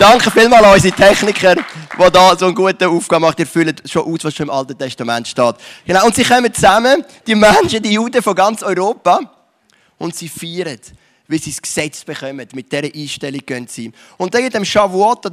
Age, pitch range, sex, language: 30-49, 150-195 Hz, male, English